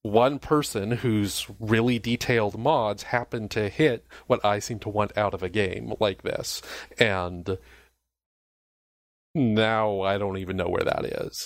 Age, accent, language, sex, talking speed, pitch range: 30-49, American, English, male, 150 wpm, 95-115 Hz